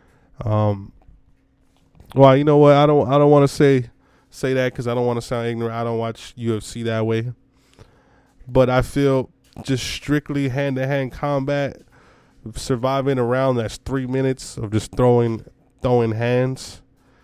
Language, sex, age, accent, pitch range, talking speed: English, male, 20-39, American, 115-130 Hz, 160 wpm